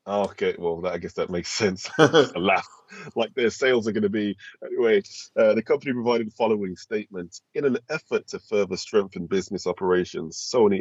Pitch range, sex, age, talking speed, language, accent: 95-120 Hz, male, 20-39, 185 wpm, English, British